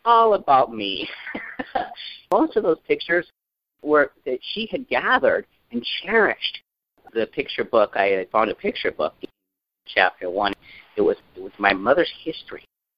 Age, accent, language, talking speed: 50-69, American, English, 155 wpm